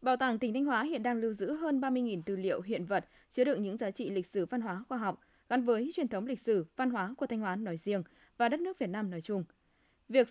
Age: 20-39